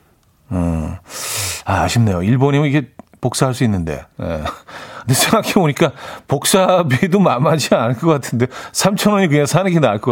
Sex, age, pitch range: male, 40-59, 110-160 Hz